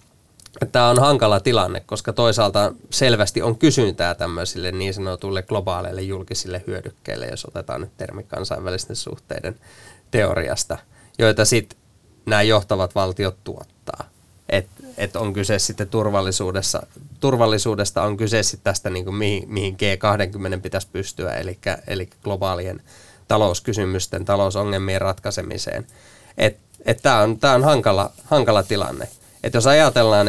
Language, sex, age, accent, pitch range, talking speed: Finnish, male, 20-39, native, 95-110 Hz, 125 wpm